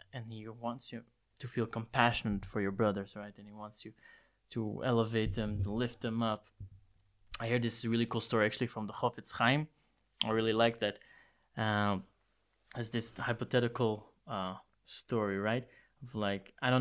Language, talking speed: English, 175 wpm